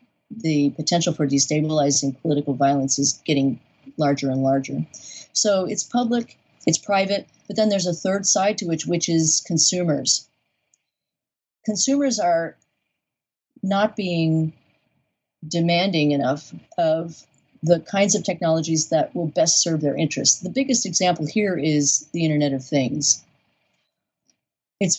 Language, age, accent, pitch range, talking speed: English, 40-59, American, 145-180 Hz, 130 wpm